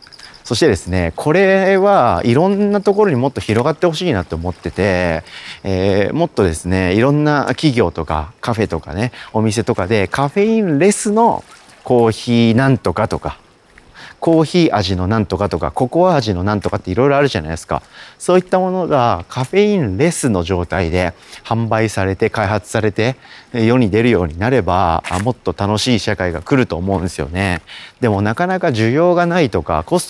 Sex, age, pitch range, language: male, 40-59, 90-130 Hz, Japanese